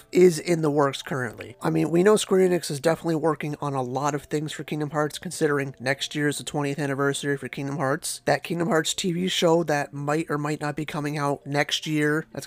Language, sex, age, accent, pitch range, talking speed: English, male, 30-49, American, 140-165 Hz, 230 wpm